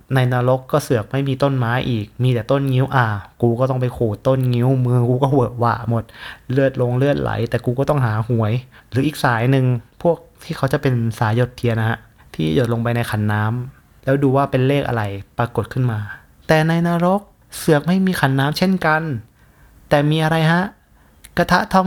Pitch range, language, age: 115-160 Hz, Thai, 20-39